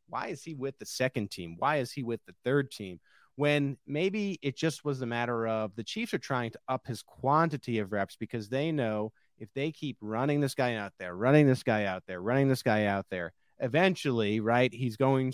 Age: 30-49